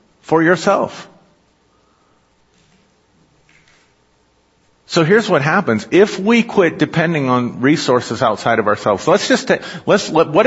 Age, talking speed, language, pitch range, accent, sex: 40-59, 120 wpm, English, 110-155 Hz, American, male